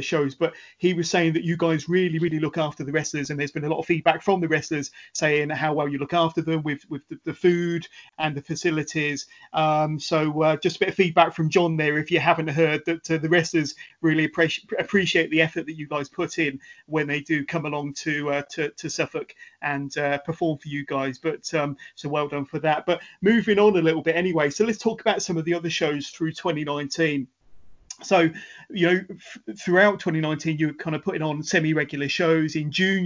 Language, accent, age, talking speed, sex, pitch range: English, British, 30-49, 225 wpm, male, 155-175 Hz